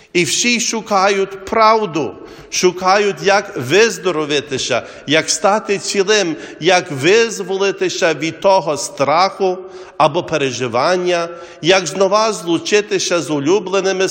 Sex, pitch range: male, 175-200 Hz